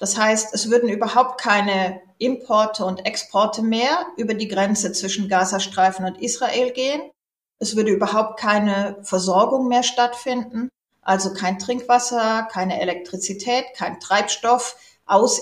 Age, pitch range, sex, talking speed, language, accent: 40-59, 200-245 Hz, female, 130 wpm, German, German